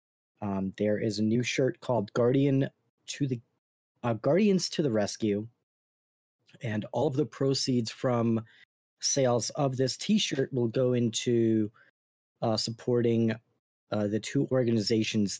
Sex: male